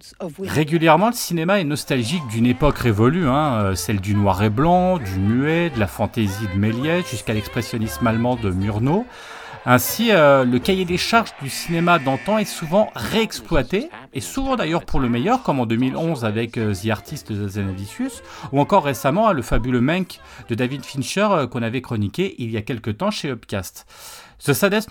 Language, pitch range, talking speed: French, 115-180 Hz, 180 wpm